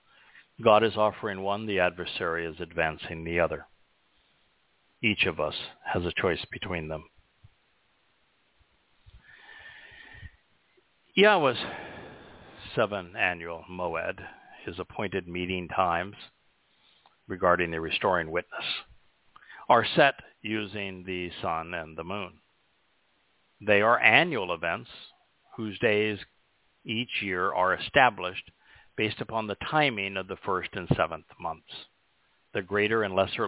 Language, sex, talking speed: English, male, 110 wpm